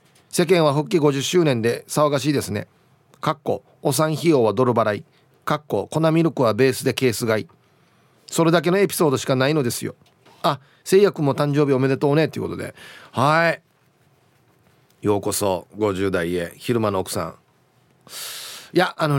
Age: 40-59